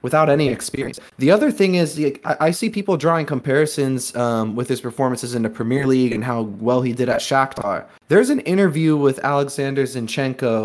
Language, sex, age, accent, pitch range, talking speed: English, male, 20-39, American, 120-160 Hz, 185 wpm